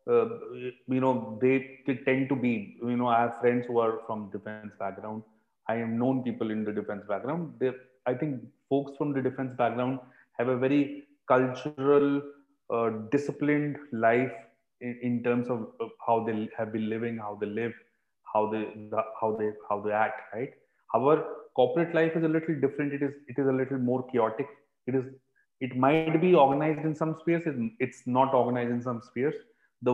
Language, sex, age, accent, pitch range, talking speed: Hindi, male, 30-49, native, 120-145 Hz, 180 wpm